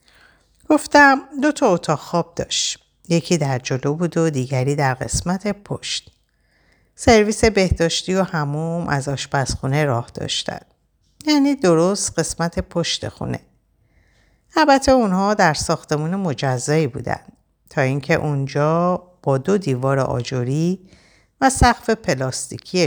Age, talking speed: 50-69, 120 wpm